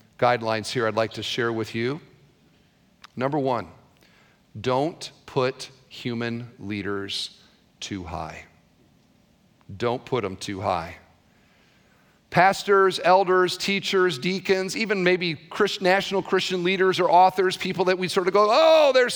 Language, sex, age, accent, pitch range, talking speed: English, male, 40-59, American, 155-200 Hz, 125 wpm